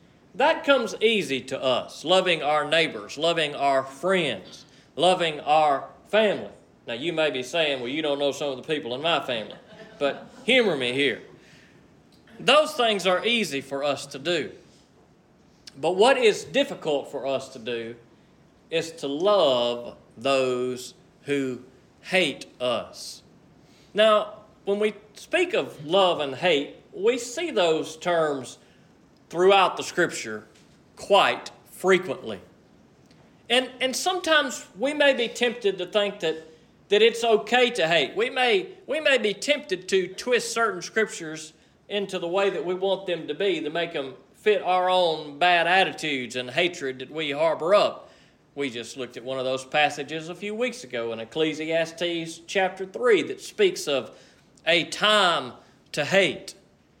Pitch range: 145-220 Hz